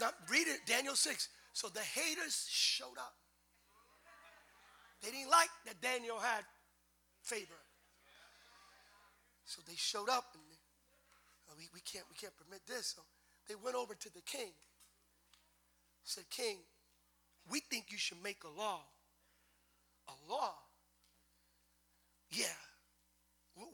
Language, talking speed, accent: English, 125 wpm, American